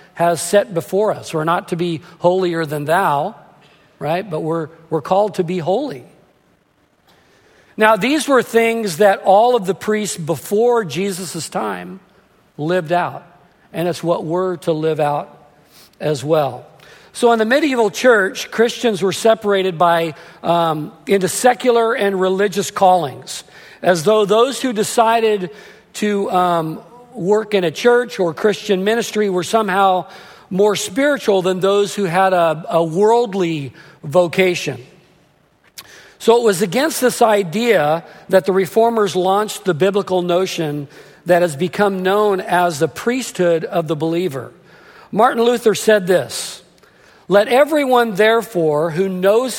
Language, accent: English, American